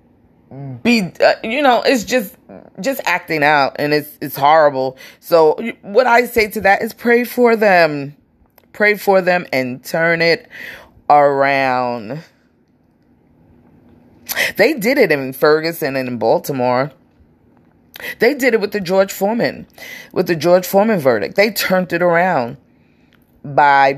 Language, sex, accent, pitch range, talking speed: English, female, American, 145-205 Hz, 140 wpm